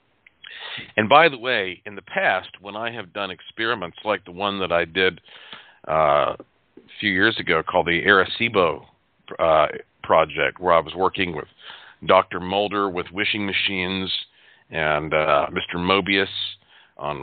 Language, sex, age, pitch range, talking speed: English, male, 40-59, 90-120 Hz, 150 wpm